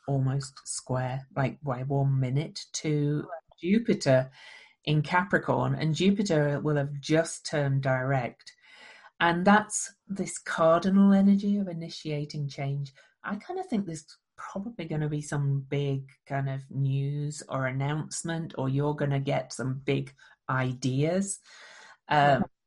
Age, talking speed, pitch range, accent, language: 40-59, 130 wpm, 135-165 Hz, British, English